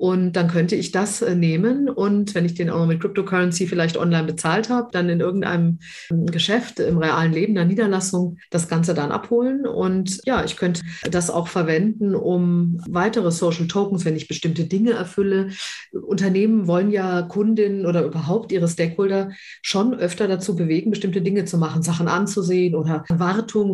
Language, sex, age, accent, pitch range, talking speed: German, female, 50-69, German, 165-195 Hz, 165 wpm